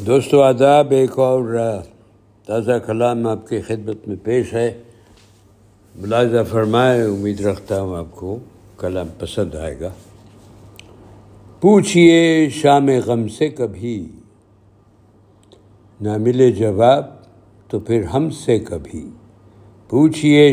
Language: Urdu